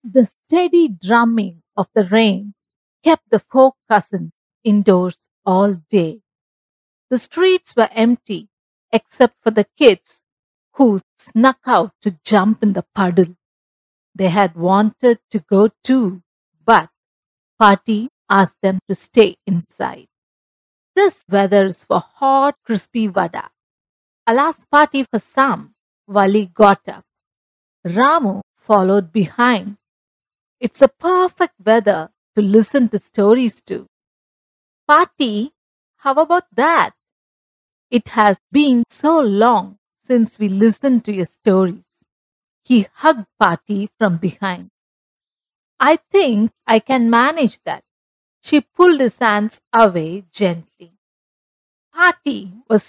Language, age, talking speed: English, 50-69, 115 wpm